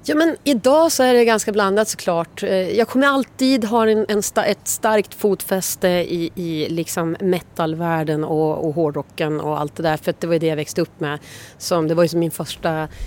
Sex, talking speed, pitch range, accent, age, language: female, 205 wpm, 165-195 Hz, native, 30-49, Swedish